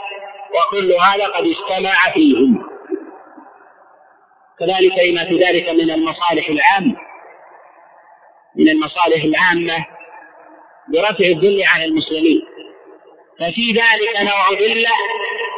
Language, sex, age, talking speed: Arabic, male, 50-69, 90 wpm